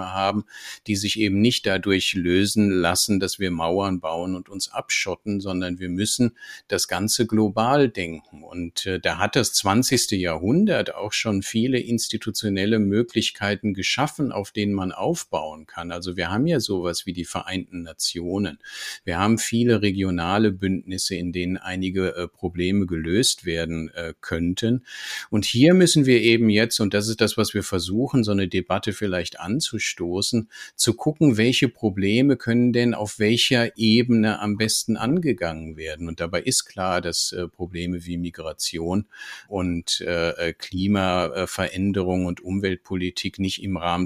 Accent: German